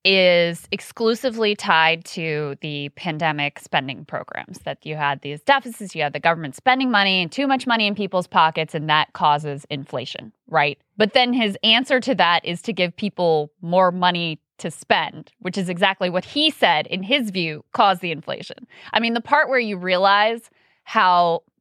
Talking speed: 180 wpm